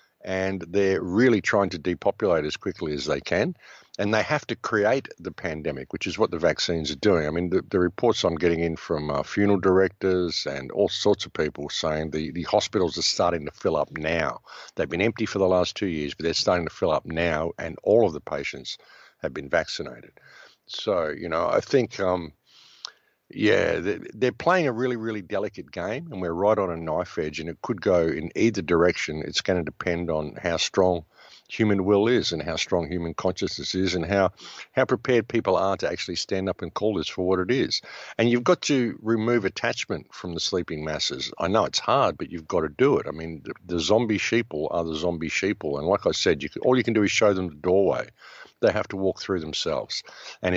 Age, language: 50-69, English